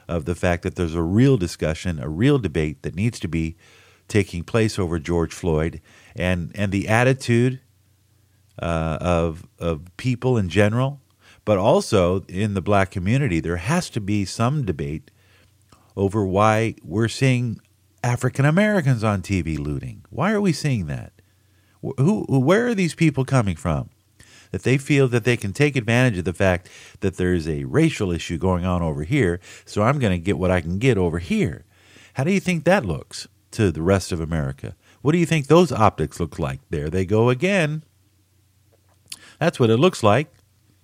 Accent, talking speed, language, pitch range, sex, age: American, 180 wpm, English, 95-130 Hz, male, 50-69